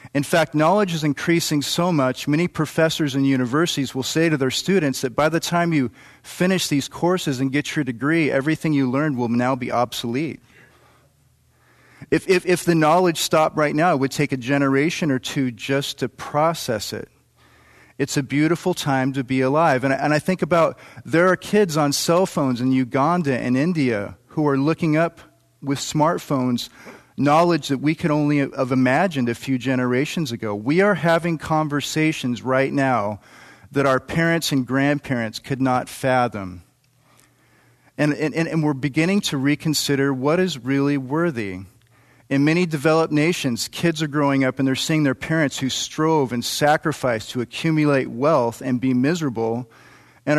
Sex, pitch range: male, 130-160 Hz